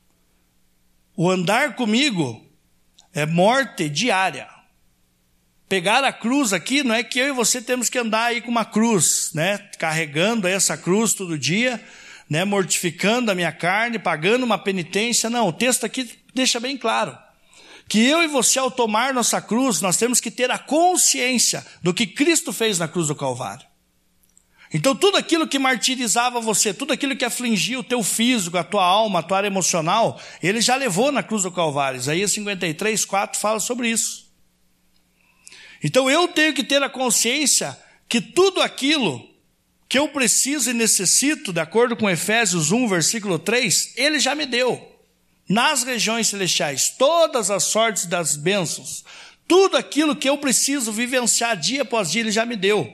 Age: 60-79